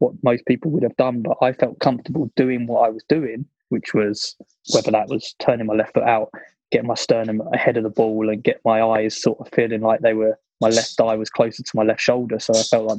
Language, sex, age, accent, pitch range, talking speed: English, male, 20-39, British, 115-135 Hz, 255 wpm